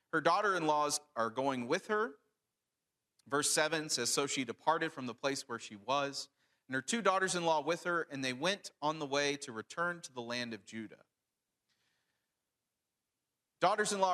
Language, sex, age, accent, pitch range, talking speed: English, male, 40-59, American, 135-180 Hz, 160 wpm